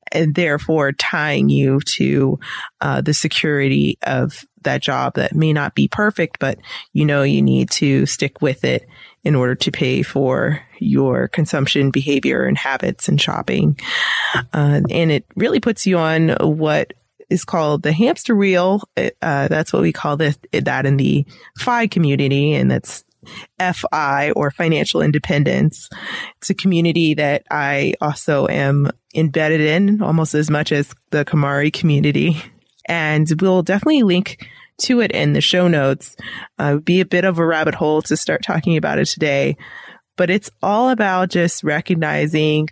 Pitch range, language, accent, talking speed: 140-180 Hz, English, American, 160 wpm